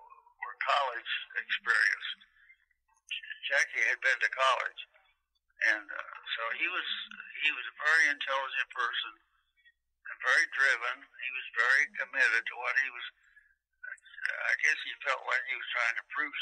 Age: 60-79